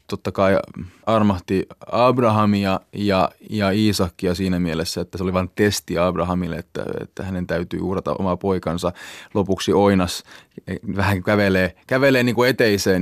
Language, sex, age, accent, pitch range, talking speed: Finnish, male, 20-39, native, 90-105 Hz, 135 wpm